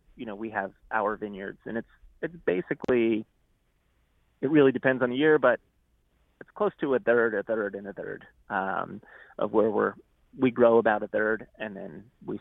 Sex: male